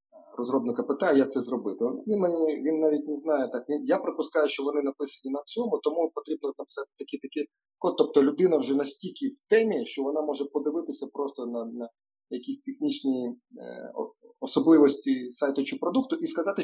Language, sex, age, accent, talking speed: Ukrainian, male, 40-59, native, 165 wpm